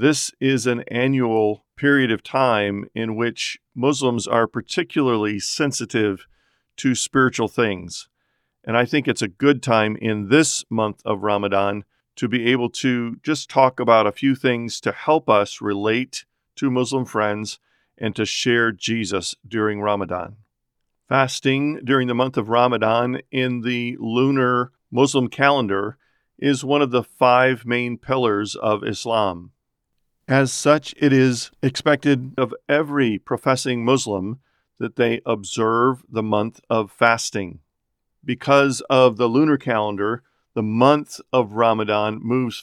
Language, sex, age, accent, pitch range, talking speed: English, male, 50-69, American, 110-130 Hz, 135 wpm